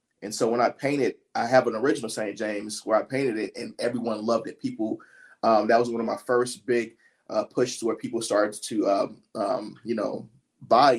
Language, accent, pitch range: English, American, 110-125 Hz